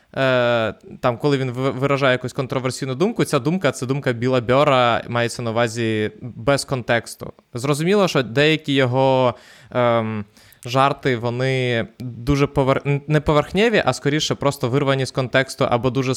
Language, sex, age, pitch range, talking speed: Ukrainian, male, 20-39, 120-145 Hz, 135 wpm